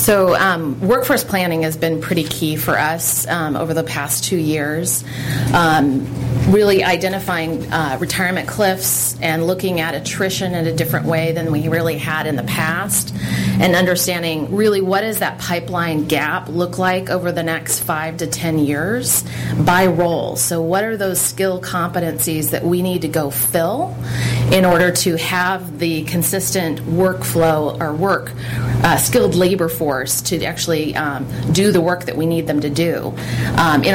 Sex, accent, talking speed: female, American, 170 wpm